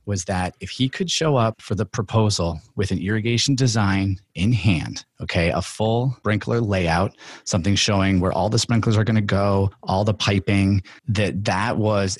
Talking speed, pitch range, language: 180 wpm, 95-110 Hz, English